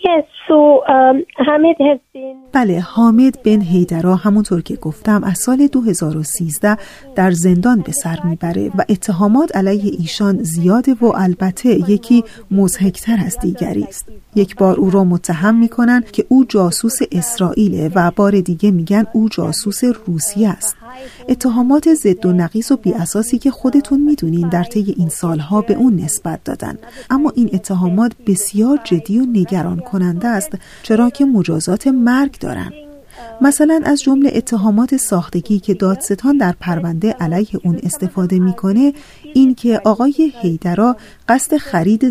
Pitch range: 180-250 Hz